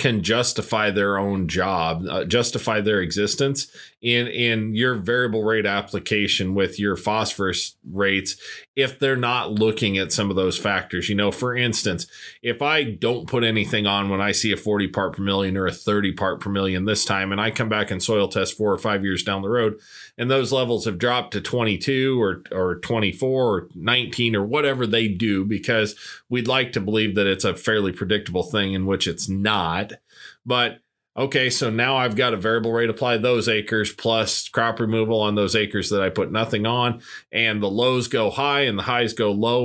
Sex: male